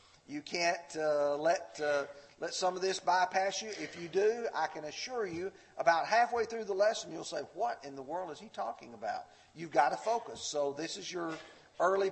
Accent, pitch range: American, 170-255 Hz